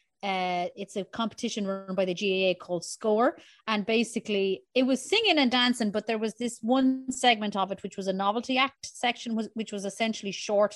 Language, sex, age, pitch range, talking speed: English, female, 30-49, 195-245 Hz, 200 wpm